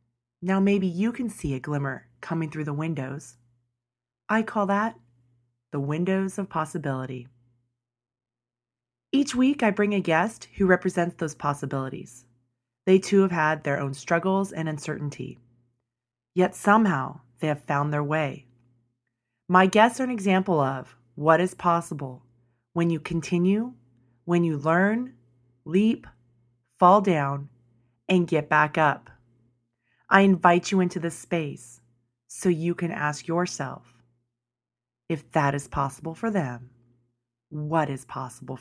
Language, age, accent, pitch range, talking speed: English, 30-49, American, 120-170 Hz, 135 wpm